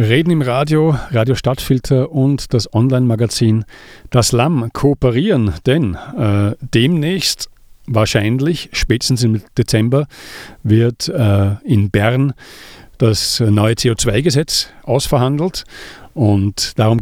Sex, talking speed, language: male, 100 wpm, English